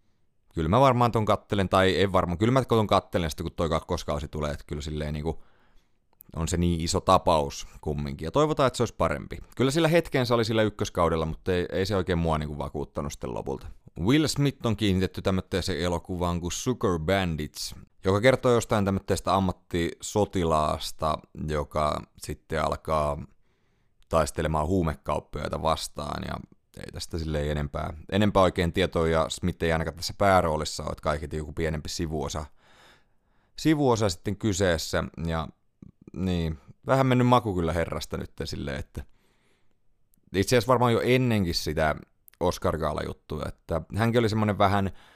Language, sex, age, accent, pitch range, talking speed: Finnish, male, 30-49, native, 80-100 Hz, 150 wpm